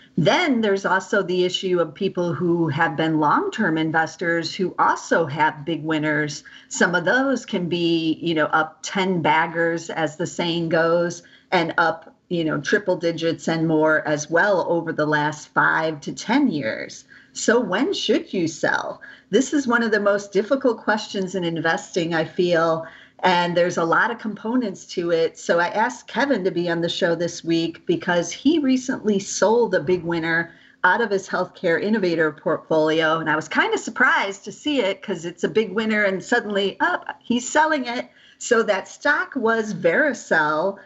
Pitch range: 165-220 Hz